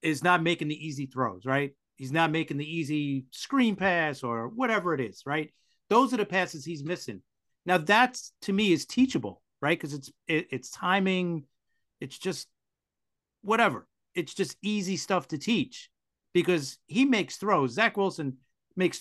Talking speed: 165 wpm